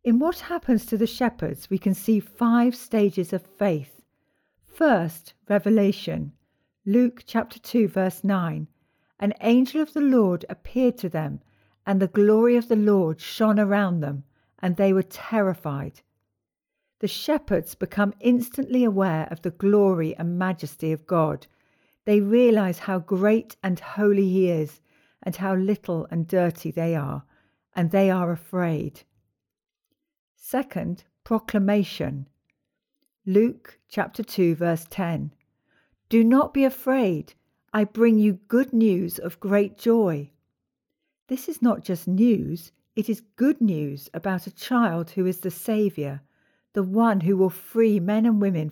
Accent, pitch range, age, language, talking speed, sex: British, 165-225 Hz, 50-69, English, 140 wpm, female